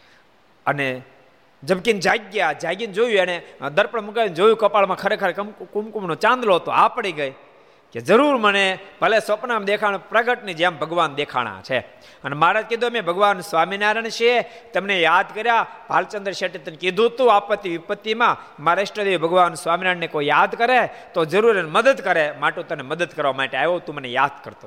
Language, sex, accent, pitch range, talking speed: Gujarati, male, native, 160-225 Hz, 90 wpm